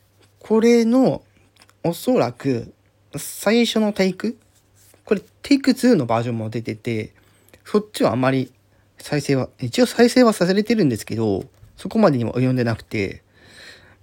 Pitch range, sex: 100-160 Hz, male